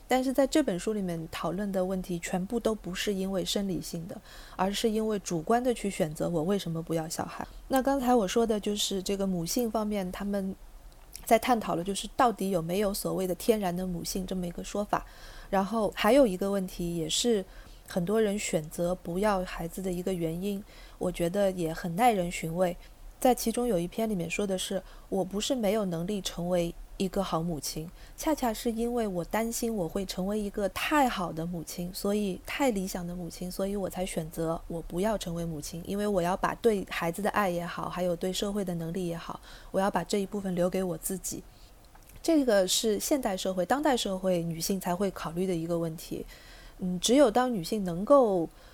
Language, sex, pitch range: Chinese, female, 175-215 Hz